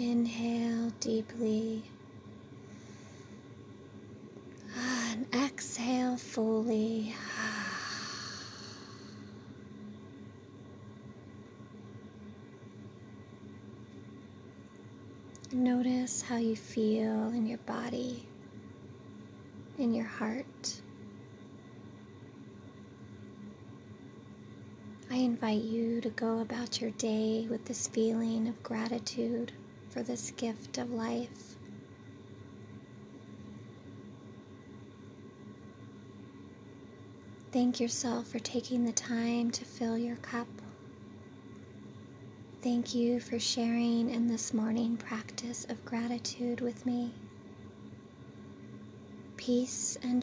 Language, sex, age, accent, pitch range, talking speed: English, female, 30-49, American, 220-240 Hz, 70 wpm